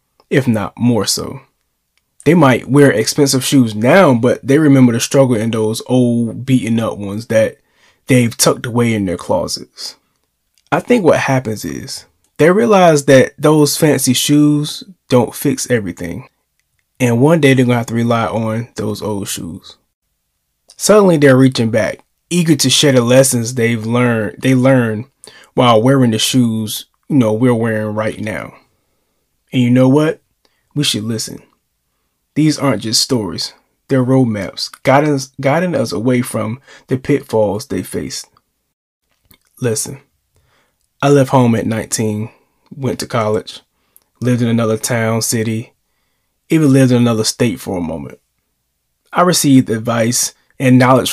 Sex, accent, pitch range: male, American, 110-135 Hz